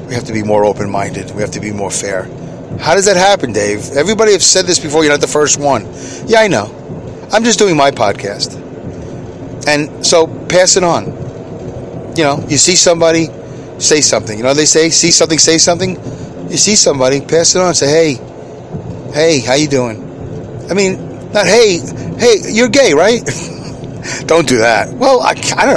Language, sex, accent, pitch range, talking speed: English, male, American, 140-220 Hz, 195 wpm